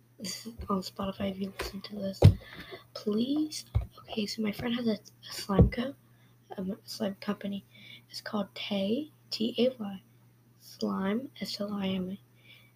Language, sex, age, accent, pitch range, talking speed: English, female, 20-39, American, 190-225 Hz, 160 wpm